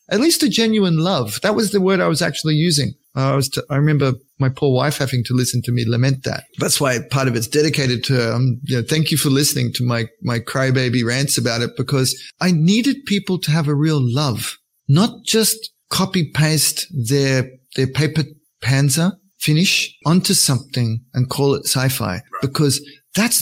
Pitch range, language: 130-170 Hz, English